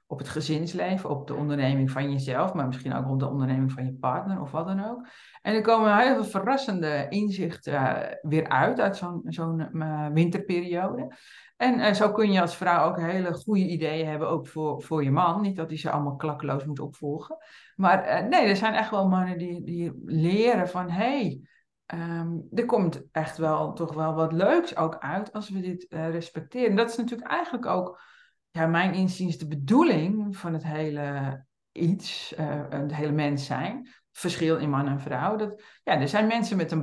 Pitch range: 150-200 Hz